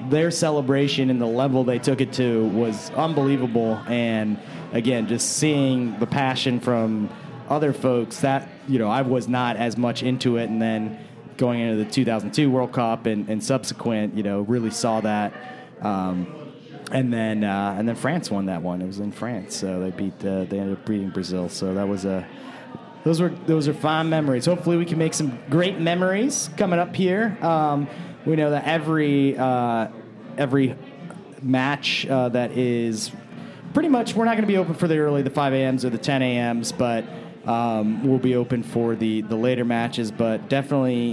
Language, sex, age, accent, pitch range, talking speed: English, male, 30-49, American, 110-145 Hz, 190 wpm